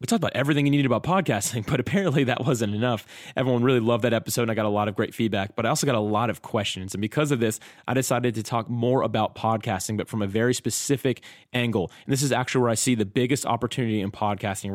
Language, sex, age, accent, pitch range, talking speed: English, male, 20-39, American, 105-125 Hz, 255 wpm